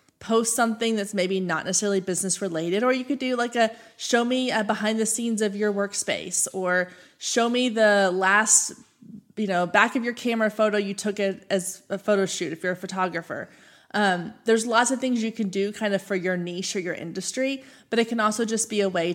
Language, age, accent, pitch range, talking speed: English, 20-39, American, 190-235 Hz, 220 wpm